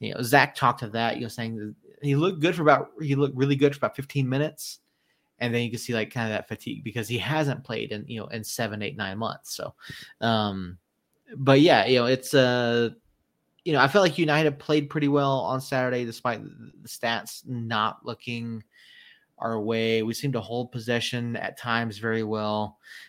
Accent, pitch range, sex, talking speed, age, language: American, 110-130 Hz, male, 210 wpm, 30-49, English